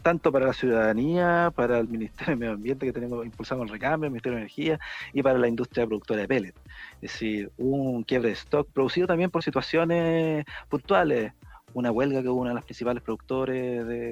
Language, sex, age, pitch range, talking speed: Spanish, male, 30-49, 115-145 Hz, 200 wpm